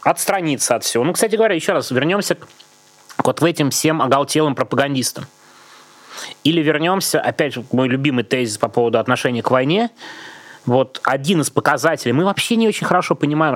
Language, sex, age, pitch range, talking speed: Russian, male, 20-39, 120-145 Hz, 175 wpm